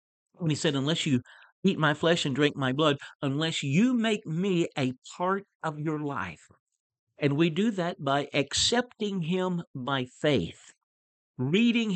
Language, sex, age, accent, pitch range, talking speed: English, male, 60-79, American, 135-185 Hz, 150 wpm